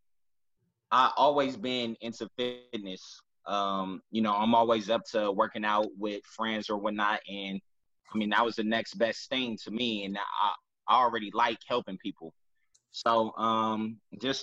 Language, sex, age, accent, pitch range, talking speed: English, male, 20-39, American, 105-130 Hz, 160 wpm